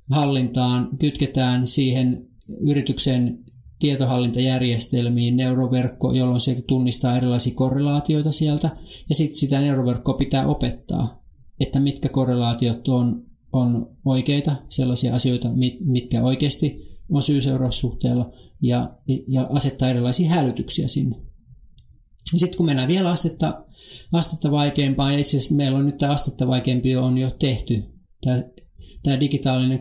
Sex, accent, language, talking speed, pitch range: male, native, Finnish, 115 wpm, 125-145 Hz